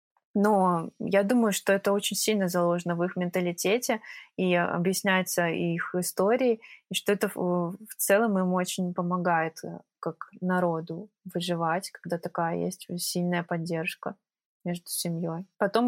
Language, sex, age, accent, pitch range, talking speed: Russian, female, 20-39, native, 175-205 Hz, 130 wpm